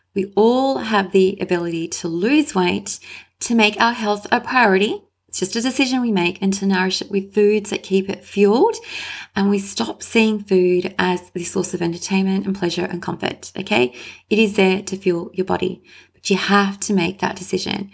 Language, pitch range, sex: English, 185-210 Hz, female